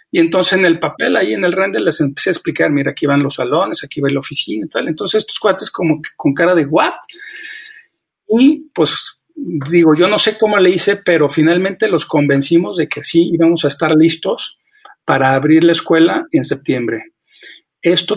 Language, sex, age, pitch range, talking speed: Spanish, male, 40-59, 150-185 Hz, 195 wpm